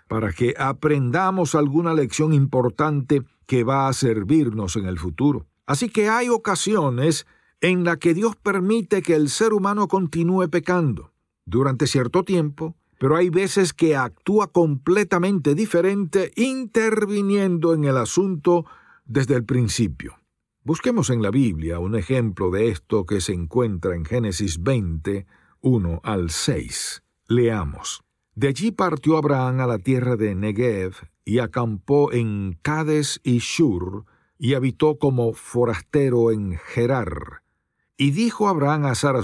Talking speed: 135 wpm